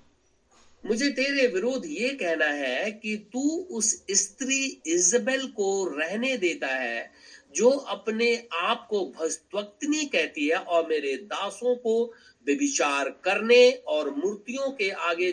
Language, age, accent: Hindi, 60-79, native